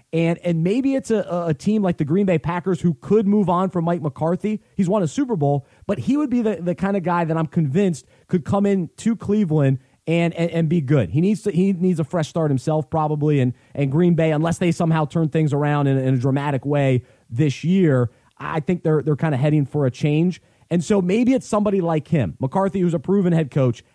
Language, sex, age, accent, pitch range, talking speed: English, male, 30-49, American, 130-180 Hz, 240 wpm